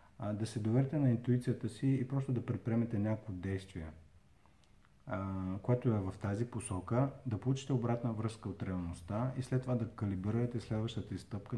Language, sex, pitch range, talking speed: Bulgarian, male, 95-120 Hz, 155 wpm